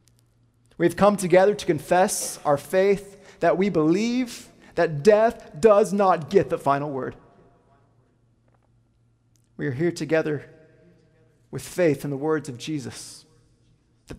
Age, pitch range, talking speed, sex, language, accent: 30-49, 120-160 Hz, 125 wpm, male, English, American